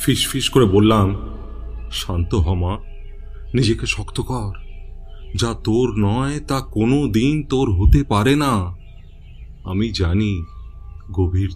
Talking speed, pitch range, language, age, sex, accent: 110 wpm, 95-125 Hz, Bengali, 30-49, male, native